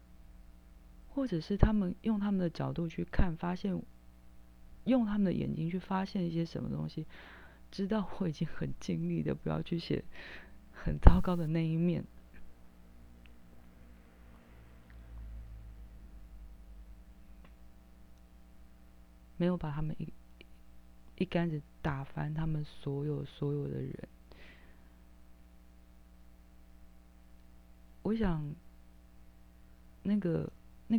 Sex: female